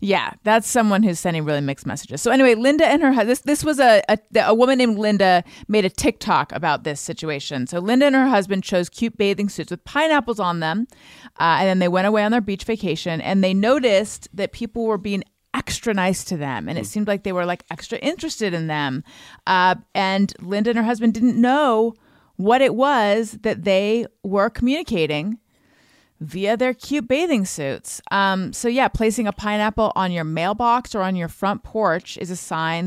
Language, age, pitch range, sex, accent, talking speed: English, 30-49, 165-225 Hz, female, American, 205 wpm